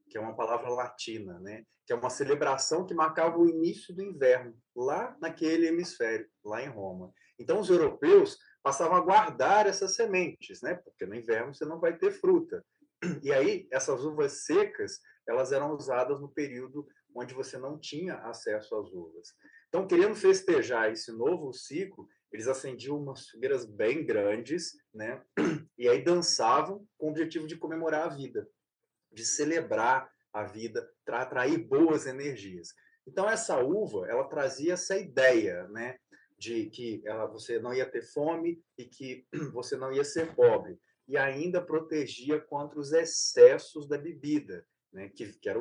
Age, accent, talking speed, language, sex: 20-39, Brazilian, 160 wpm, Portuguese, male